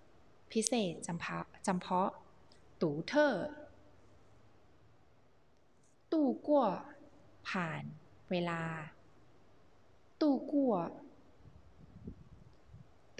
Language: Thai